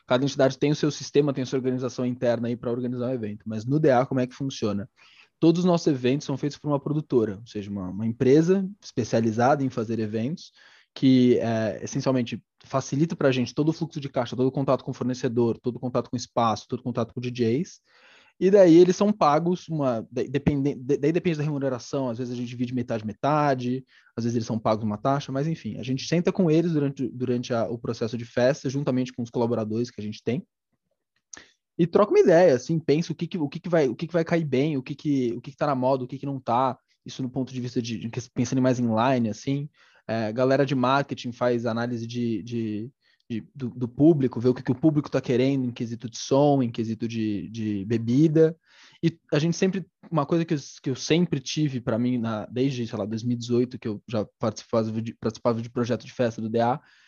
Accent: Brazilian